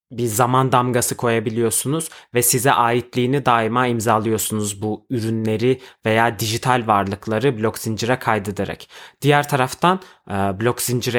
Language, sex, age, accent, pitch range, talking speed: Turkish, male, 30-49, native, 115-140 Hz, 115 wpm